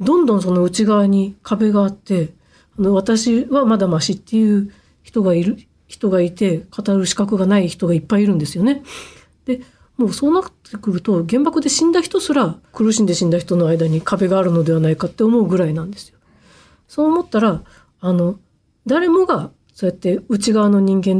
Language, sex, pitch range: Japanese, female, 180-245 Hz